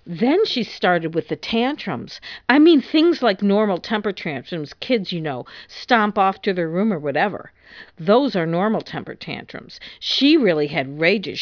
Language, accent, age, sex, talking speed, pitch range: English, American, 50-69, female, 170 wpm, 185-235 Hz